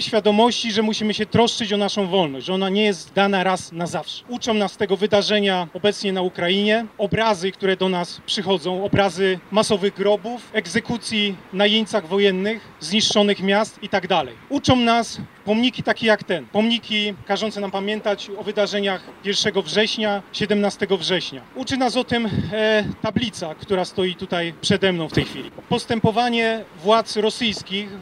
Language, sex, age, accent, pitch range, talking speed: Polish, male, 30-49, native, 195-220 Hz, 155 wpm